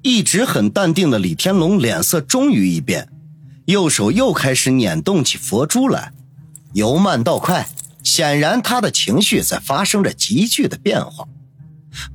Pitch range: 140-205 Hz